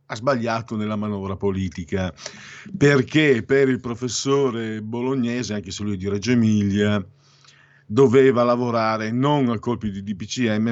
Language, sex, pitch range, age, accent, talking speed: Italian, male, 95-115 Hz, 50-69, native, 135 wpm